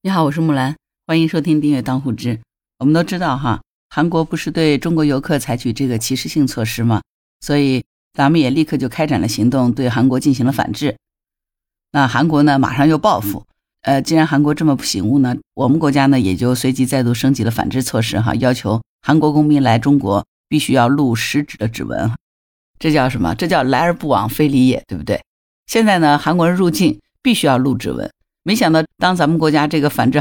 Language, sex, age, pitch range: Chinese, female, 50-69, 125-155 Hz